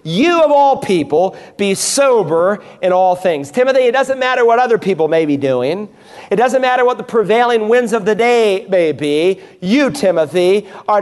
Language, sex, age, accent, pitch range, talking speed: English, male, 40-59, American, 180-235 Hz, 185 wpm